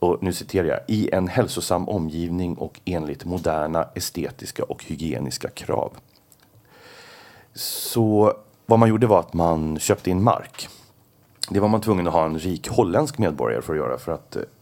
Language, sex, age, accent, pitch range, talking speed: English, male, 30-49, Swedish, 85-110 Hz, 165 wpm